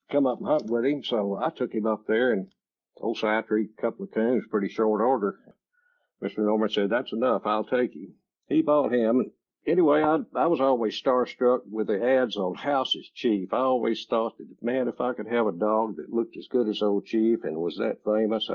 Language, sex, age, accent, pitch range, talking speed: English, male, 60-79, American, 105-125 Hz, 215 wpm